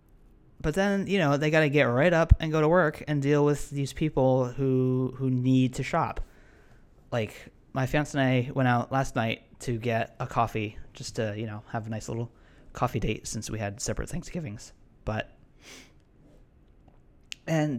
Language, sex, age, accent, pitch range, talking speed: English, male, 20-39, American, 110-145 Hz, 180 wpm